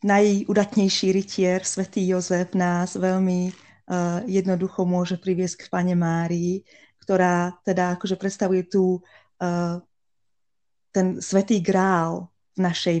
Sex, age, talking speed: female, 20-39, 100 wpm